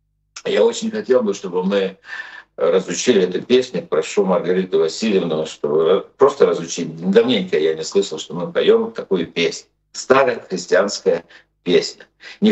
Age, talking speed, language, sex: 60-79, 140 wpm, Russian, male